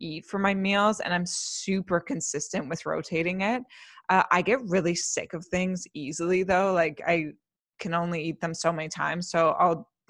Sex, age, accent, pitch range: female, 20-39, American, 165-200 Hz